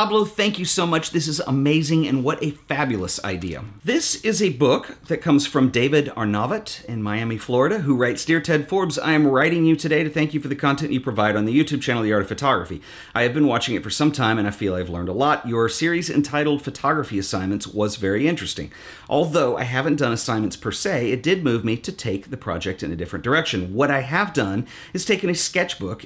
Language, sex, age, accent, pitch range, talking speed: English, male, 40-59, American, 100-145 Hz, 235 wpm